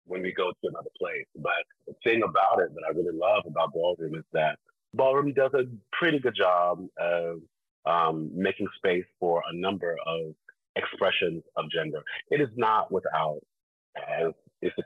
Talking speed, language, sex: 175 wpm, English, male